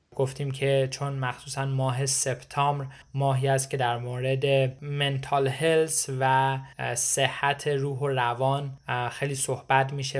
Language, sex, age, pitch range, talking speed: Persian, male, 20-39, 130-145 Hz, 125 wpm